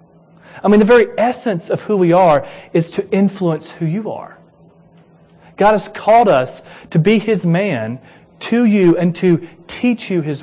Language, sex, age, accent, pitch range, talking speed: English, male, 30-49, American, 170-215 Hz, 175 wpm